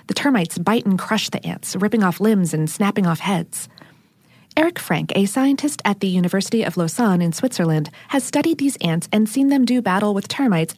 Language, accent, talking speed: English, American, 200 wpm